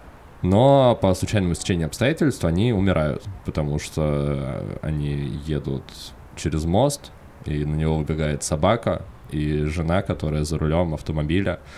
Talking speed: 120 wpm